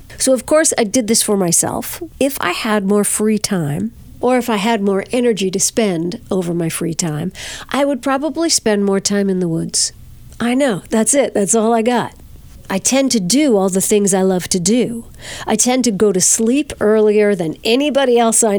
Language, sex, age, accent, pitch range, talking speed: English, female, 50-69, American, 195-245 Hz, 210 wpm